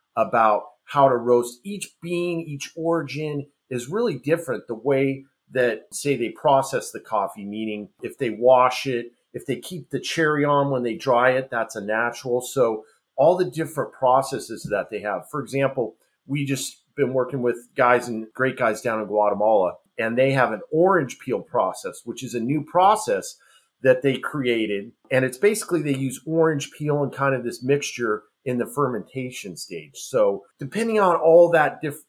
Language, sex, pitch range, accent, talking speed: English, male, 120-150 Hz, American, 180 wpm